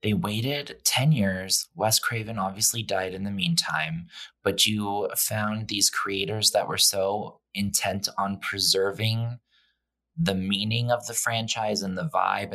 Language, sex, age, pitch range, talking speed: English, male, 20-39, 95-120 Hz, 145 wpm